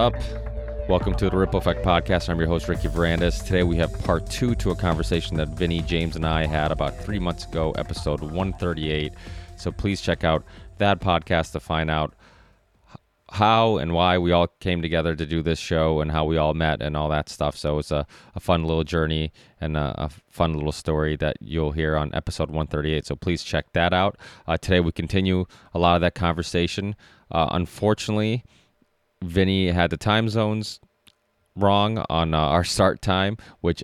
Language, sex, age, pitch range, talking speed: English, male, 30-49, 80-90 Hz, 190 wpm